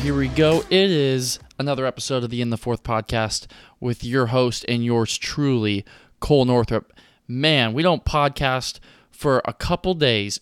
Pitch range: 120-150 Hz